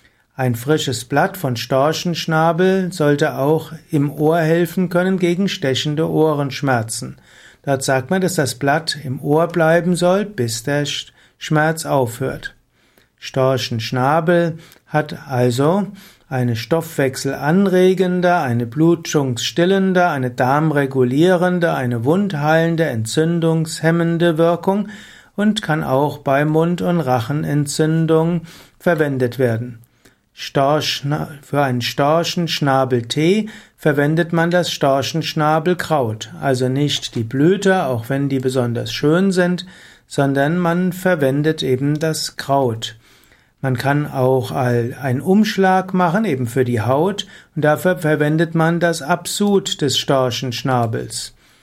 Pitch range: 130-170 Hz